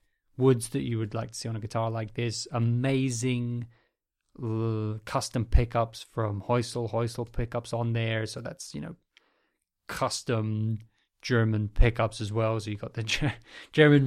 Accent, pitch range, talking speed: British, 110-125 Hz, 155 wpm